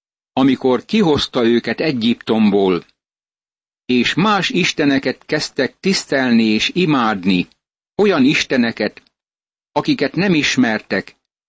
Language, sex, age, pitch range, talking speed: Hungarian, male, 60-79, 120-150 Hz, 85 wpm